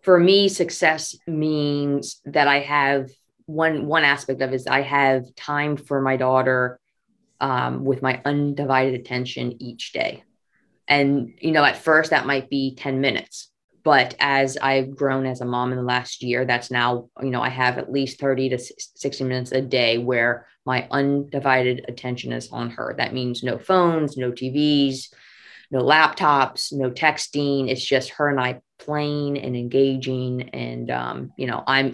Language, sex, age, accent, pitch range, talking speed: English, female, 20-39, American, 125-150 Hz, 170 wpm